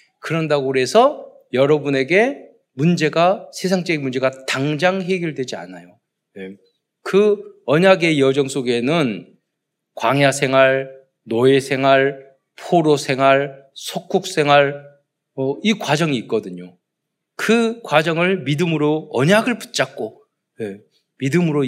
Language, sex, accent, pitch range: Korean, male, native, 115-180 Hz